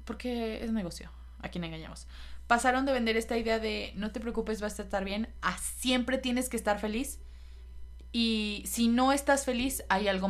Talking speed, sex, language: 185 wpm, female, Spanish